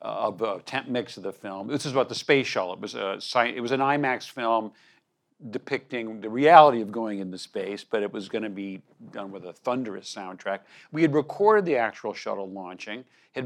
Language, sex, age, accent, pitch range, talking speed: English, male, 50-69, American, 100-130 Hz, 215 wpm